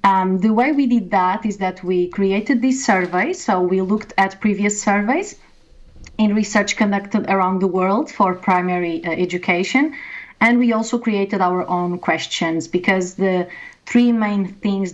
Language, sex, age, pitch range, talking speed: English, female, 30-49, 180-230 Hz, 160 wpm